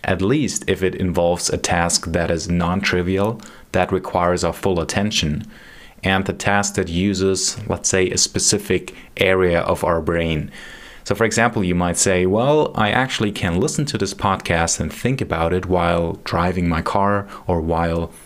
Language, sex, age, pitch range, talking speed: English, male, 30-49, 85-105 Hz, 175 wpm